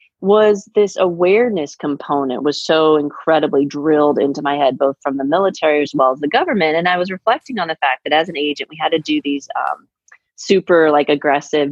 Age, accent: 30-49, American